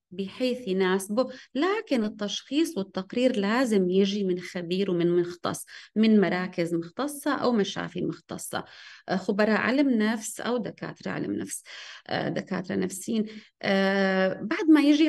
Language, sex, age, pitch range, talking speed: Arabic, female, 30-49, 190-255 Hz, 115 wpm